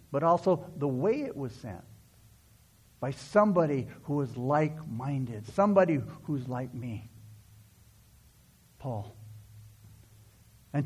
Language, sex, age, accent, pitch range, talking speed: English, male, 60-79, American, 110-180 Hz, 100 wpm